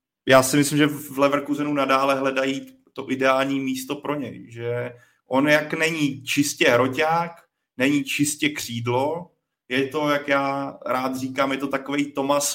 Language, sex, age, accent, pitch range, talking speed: Czech, male, 30-49, native, 125-140 Hz, 155 wpm